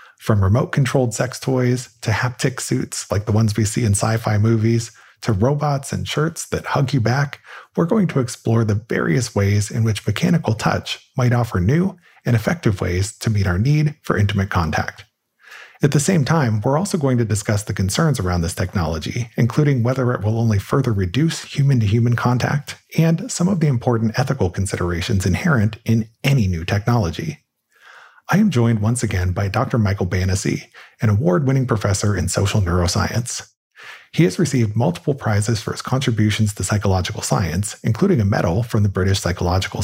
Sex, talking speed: male, 175 wpm